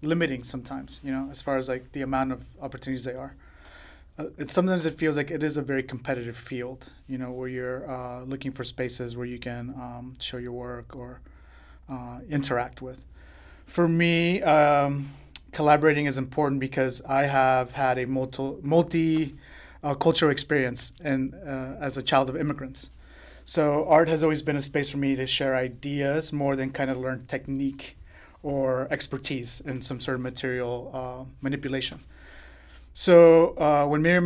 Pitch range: 130-150 Hz